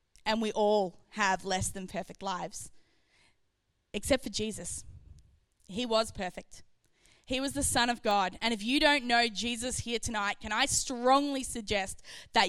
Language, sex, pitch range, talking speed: English, female, 210-265 Hz, 160 wpm